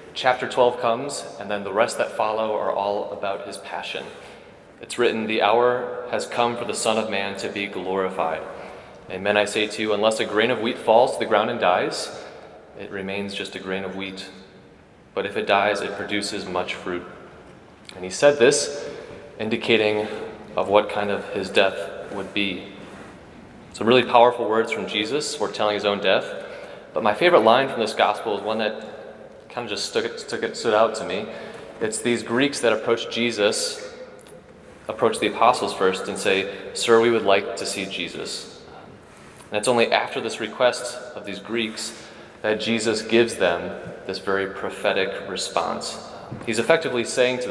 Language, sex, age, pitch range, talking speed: English, male, 30-49, 100-120 Hz, 180 wpm